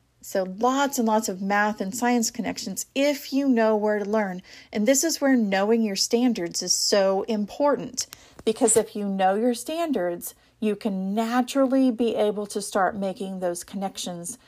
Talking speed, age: 170 wpm, 40-59